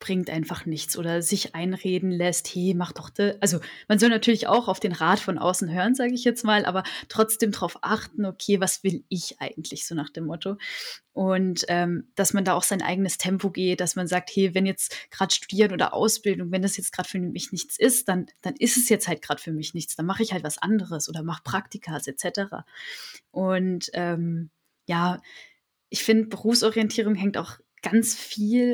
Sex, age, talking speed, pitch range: female, 10-29, 200 wpm, 180-220 Hz